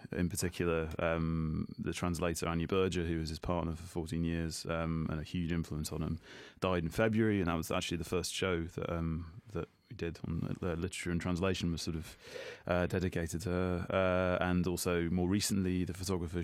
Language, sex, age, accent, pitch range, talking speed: English, male, 30-49, British, 85-95 Hz, 205 wpm